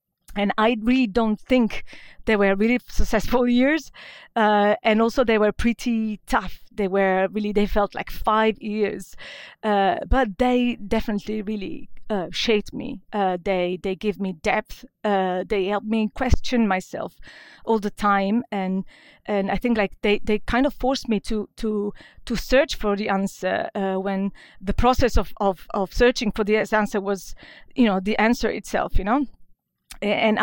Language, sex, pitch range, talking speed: English, female, 195-230 Hz, 170 wpm